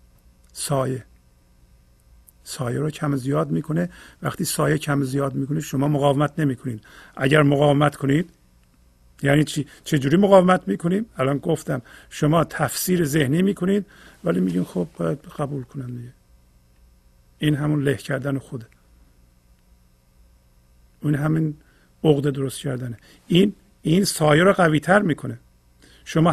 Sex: male